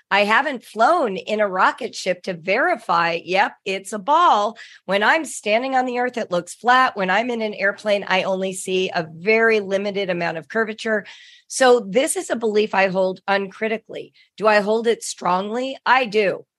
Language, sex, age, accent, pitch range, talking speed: English, female, 40-59, American, 185-230 Hz, 185 wpm